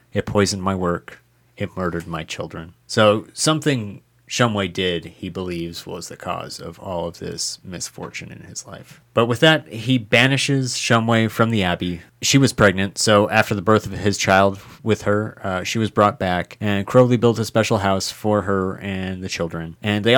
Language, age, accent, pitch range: English, 30-49, American, 95-115 Hz